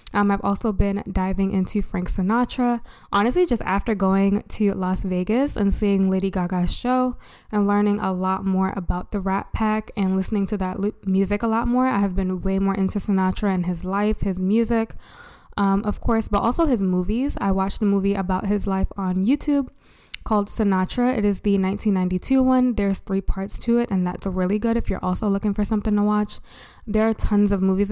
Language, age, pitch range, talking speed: English, 20-39, 190-215 Hz, 200 wpm